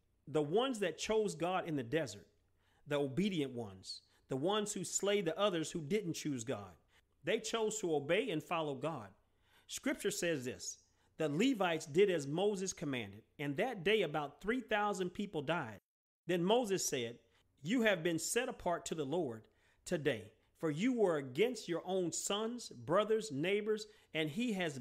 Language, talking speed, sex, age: English, 165 wpm, male, 40-59